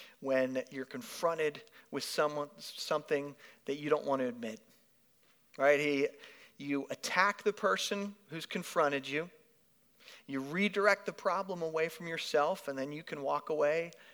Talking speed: 135 wpm